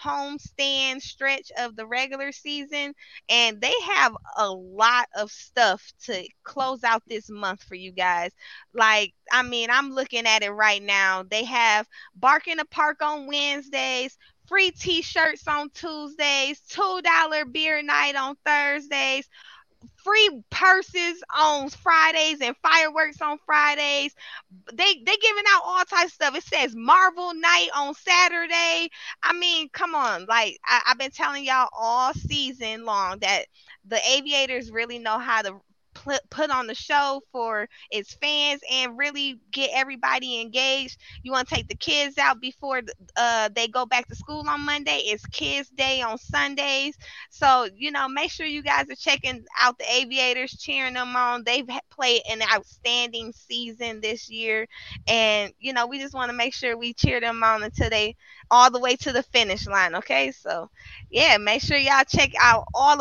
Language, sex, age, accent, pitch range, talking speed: English, female, 20-39, American, 230-295 Hz, 165 wpm